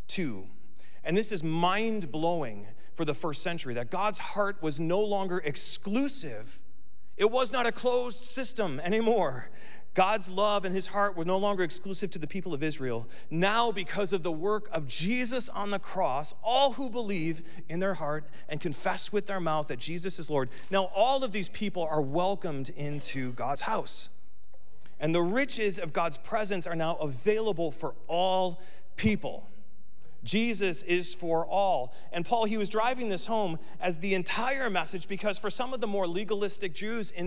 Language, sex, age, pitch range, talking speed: English, male, 40-59, 160-210 Hz, 175 wpm